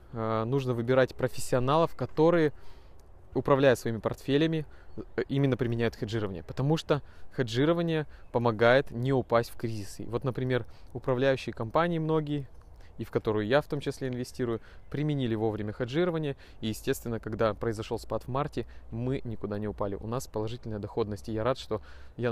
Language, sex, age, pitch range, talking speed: Russian, male, 20-39, 105-135 Hz, 145 wpm